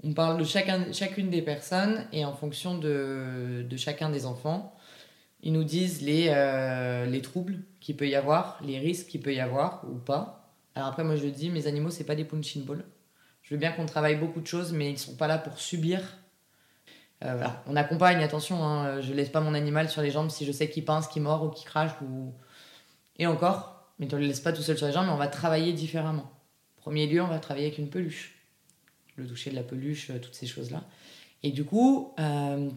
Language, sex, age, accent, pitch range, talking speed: French, female, 20-39, French, 145-175 Hz, 225 wpm